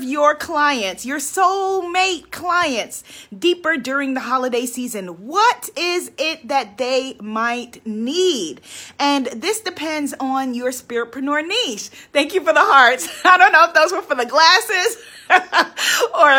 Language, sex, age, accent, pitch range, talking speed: English, female, 30-49, American, 260-335 Hz, 145 wpm